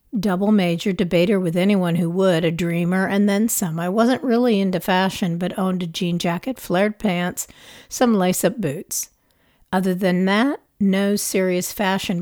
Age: 50-69